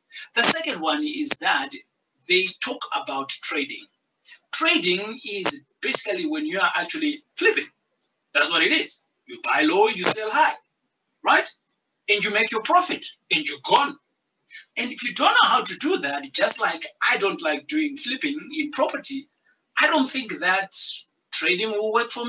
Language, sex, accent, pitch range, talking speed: English, male, South African, 245-330 Hz, 165 wpm